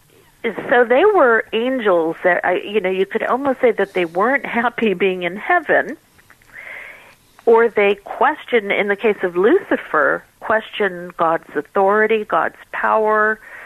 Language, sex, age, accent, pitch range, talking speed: English, female, 50-69, American, 170-220 Hz, 135 wpm